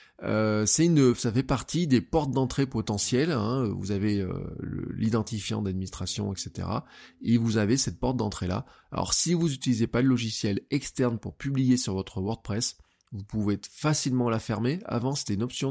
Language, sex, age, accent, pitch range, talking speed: French, male, 20-39, French, 100-130 Hz, 180 wpm